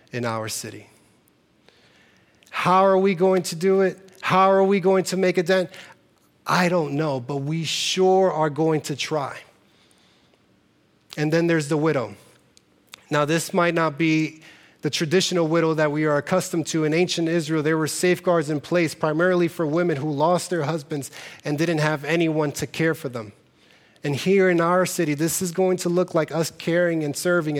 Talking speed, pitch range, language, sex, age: 185 wpm, 150-180 Hz, English, male, 30-49